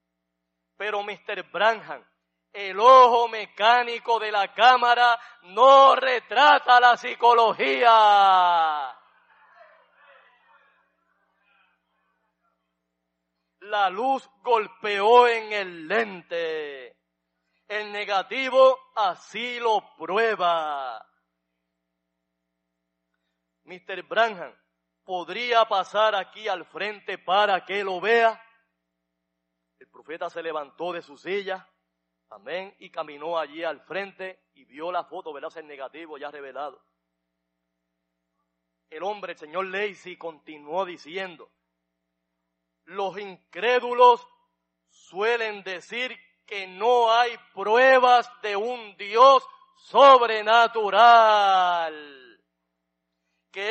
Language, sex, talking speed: Spanish, male, 85 wpm